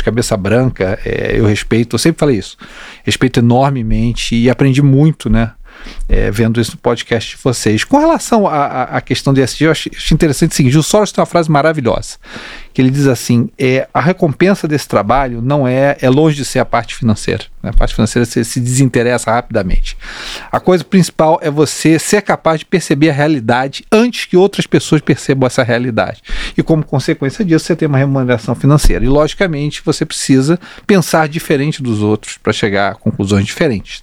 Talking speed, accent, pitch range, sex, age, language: 185 wpm, Brazilian, 130-195 Hz, male, 40-59, Portuguese